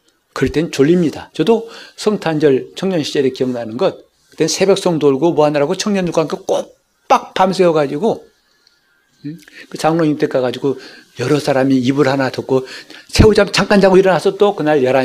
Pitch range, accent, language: 135-200 Hz, native, Korean